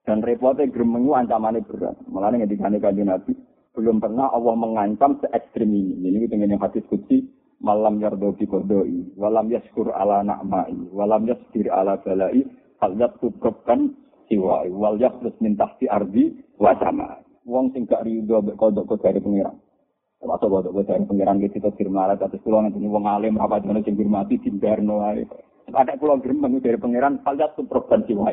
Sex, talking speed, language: male, 165 wpm, Malay